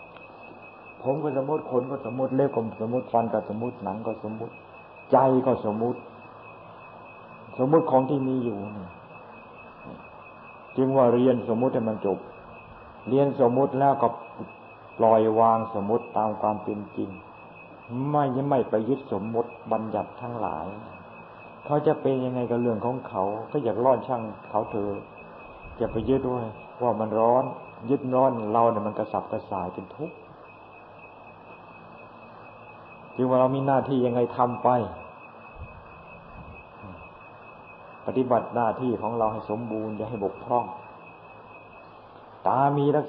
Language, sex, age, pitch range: Thai, male, 60-79, 105-130 Hz